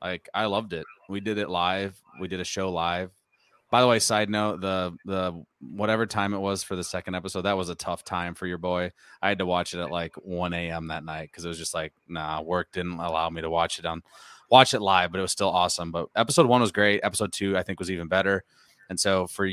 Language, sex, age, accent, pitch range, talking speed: English, male, 20-39, American, 90-105 Hz, 255 wpm